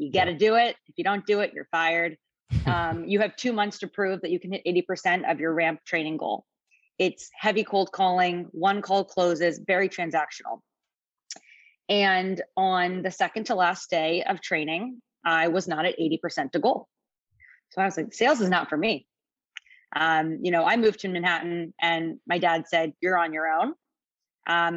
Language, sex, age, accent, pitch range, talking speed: English, female, 20-39, American, 170-205 Hz, 190 wpm